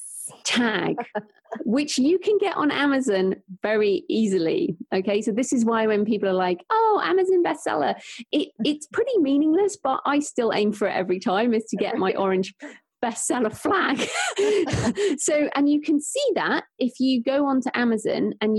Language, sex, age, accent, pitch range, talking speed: English, female, 30-49, British, 195-280 Hz, 165 wpm